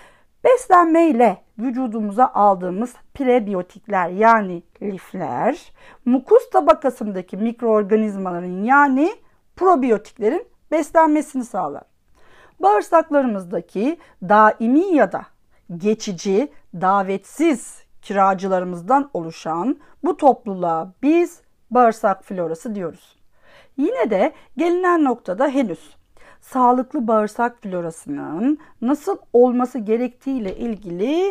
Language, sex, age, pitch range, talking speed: Turkish, female, 40-59, 195-285 Hz, 75 wpm